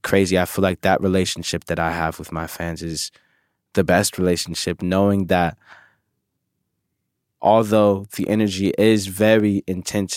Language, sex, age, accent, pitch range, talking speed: English, male, 20-39, American, 95-115 Hz, 140 wpm